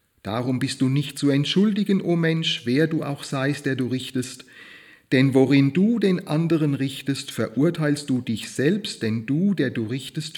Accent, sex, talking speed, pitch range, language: German, male, 175 wpm, 115-150 Hz, German